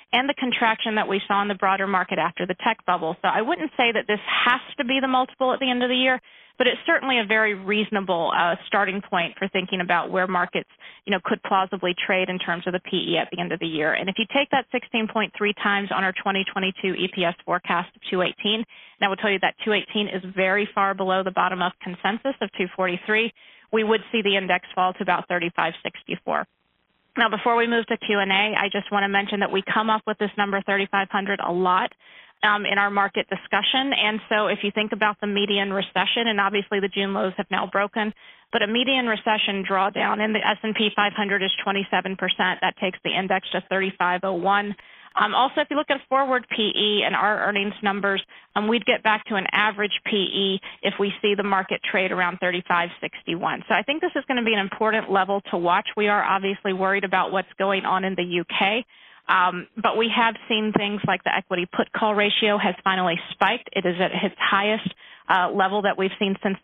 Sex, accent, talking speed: female, American, 215 wpm